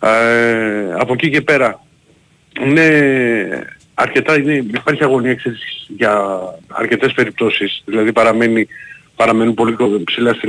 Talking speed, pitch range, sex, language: 115 wpm, 100-125 Hz, male, Greek